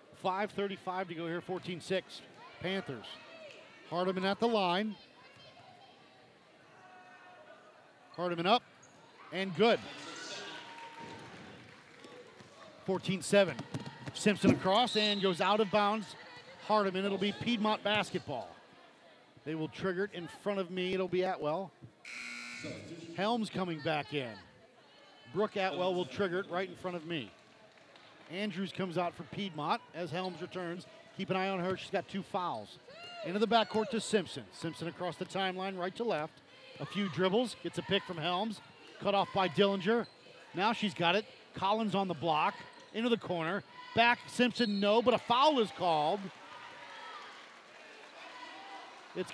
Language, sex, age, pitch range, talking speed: English, male, 50-69, 175-215 Hz, 140 wpm